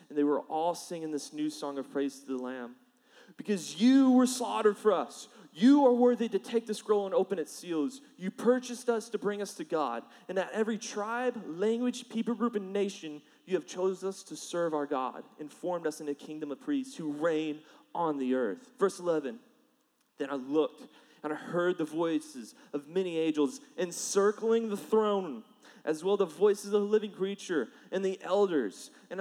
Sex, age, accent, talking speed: male, 30-49, American, 200 wpm